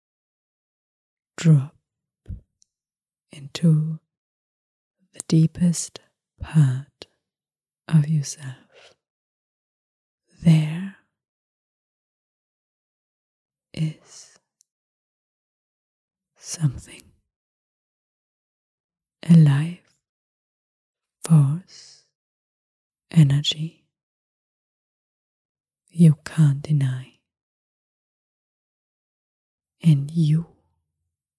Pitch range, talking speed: 130-160 Hz, 35 wpm